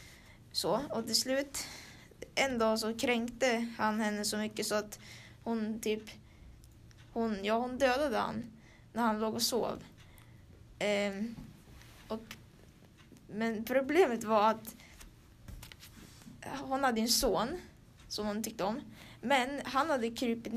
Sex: female